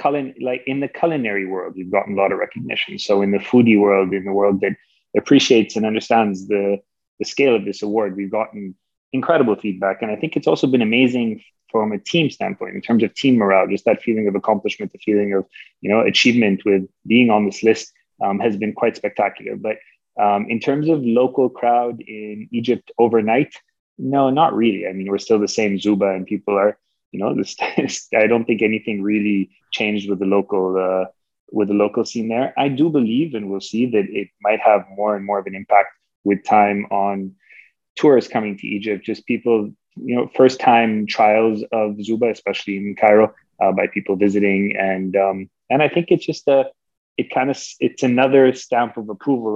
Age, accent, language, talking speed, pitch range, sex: 20-39, Canadian, English, 200 wpm, 100-115 Hz, male